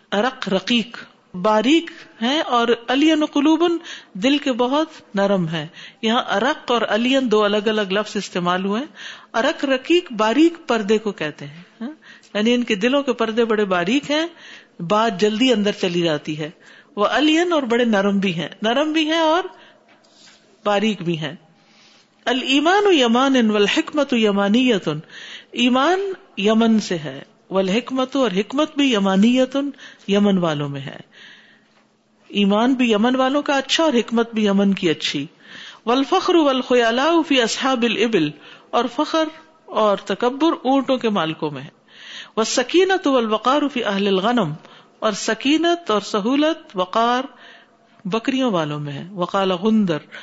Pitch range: 195-265 Hz